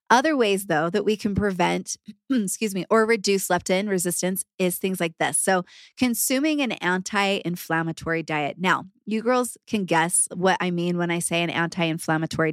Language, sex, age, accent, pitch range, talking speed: English, female, 20-39, American, 170-205 Hz, 170 wpm